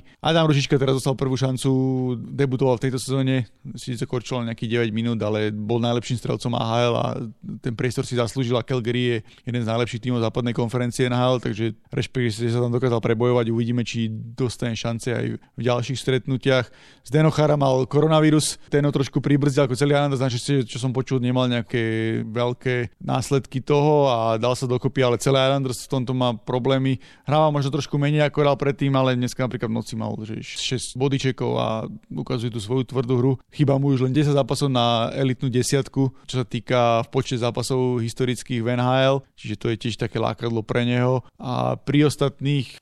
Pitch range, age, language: 120-135 Hz, 30-49, Slovak